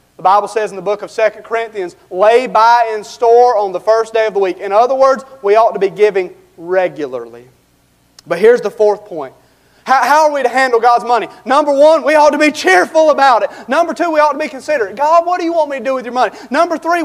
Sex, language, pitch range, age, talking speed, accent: male, English, 175-245 Hz, 30-49, 245 wpm, American